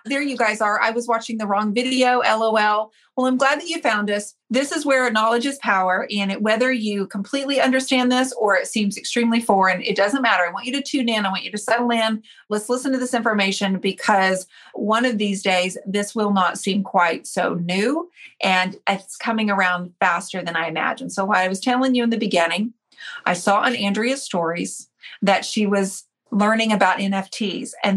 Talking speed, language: 210 wpm, English